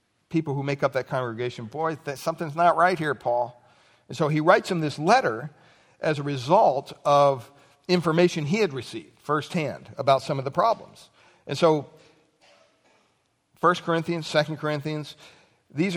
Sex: male